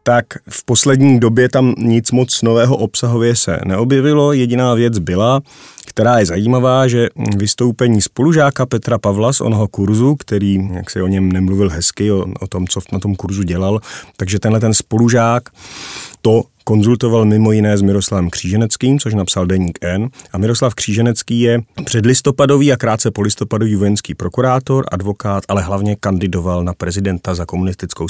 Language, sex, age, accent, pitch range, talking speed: Czech, male, 30-49, native, 100-125 Hz, 160 wpm